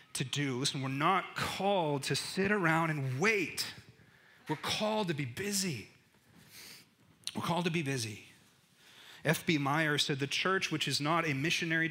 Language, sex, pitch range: English, male, 130-165 Hz